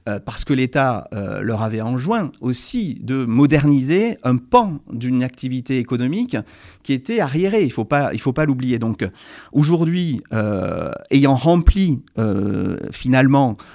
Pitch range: 120-150 Hz